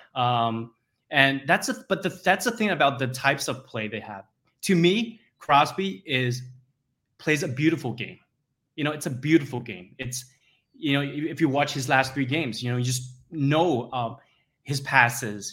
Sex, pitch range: male, 125-155 Hz